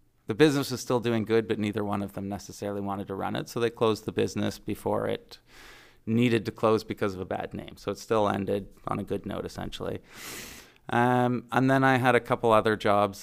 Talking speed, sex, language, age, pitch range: 220 wpm, male, English, 30-49, 100-110 Hz